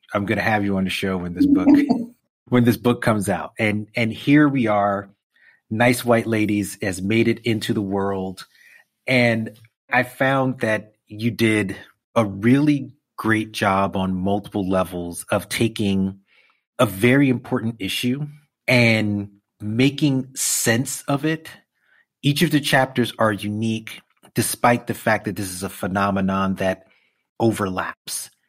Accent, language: American, English